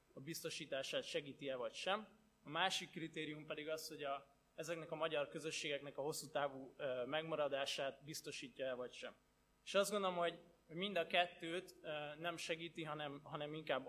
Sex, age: male, 20-39